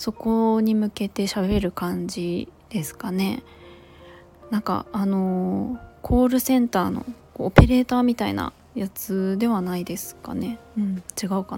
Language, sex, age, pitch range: Japanese, female, 20-39, 185-220 Hz